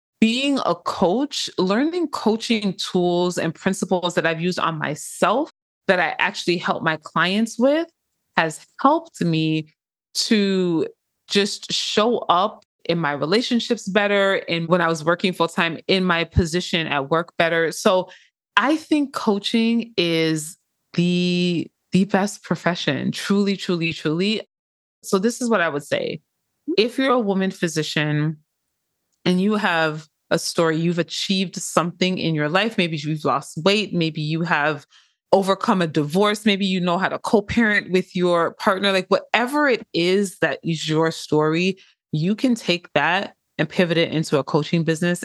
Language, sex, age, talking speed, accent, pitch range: English, female, 20-39, 155 wpm, American, 165-200 Hz